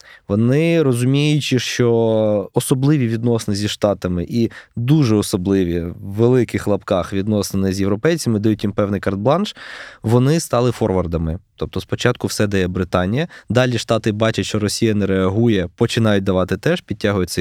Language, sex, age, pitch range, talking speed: Ukrainian, male, 20-39, 100-125 Hz, 135 wpm